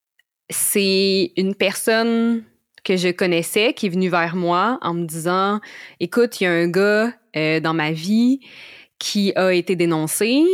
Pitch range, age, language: 170-215 Hz, 20-39, French